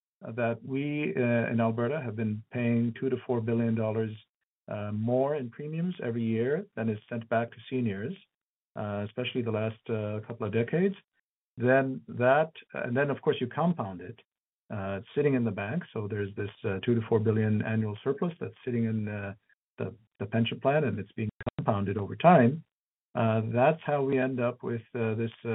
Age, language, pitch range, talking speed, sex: 50-69, English, 110-130 Hz, 190 wpm, male